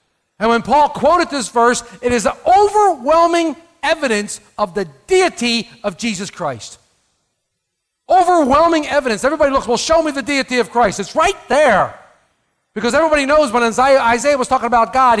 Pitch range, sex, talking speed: 190-290 Hz, male, 160 wpm